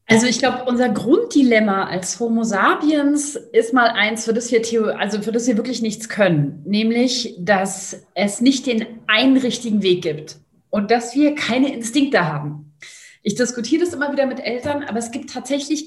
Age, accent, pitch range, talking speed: 30-49, German, 195-270 Hz, 180 wpm